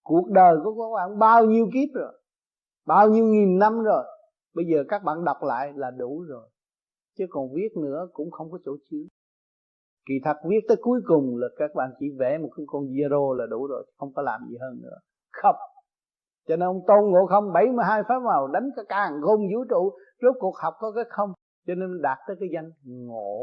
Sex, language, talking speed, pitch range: male, Vietnamese, 215 wpm, 145-215 Hz